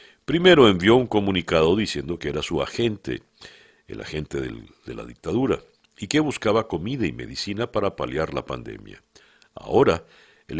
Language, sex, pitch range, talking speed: Spanish, male, 75-115 Hz, 145 wpm